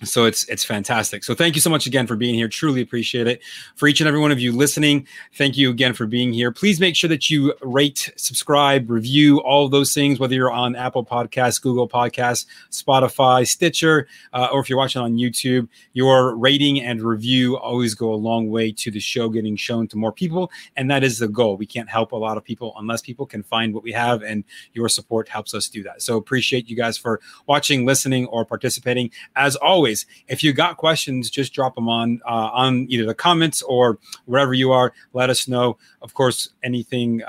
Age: 30-49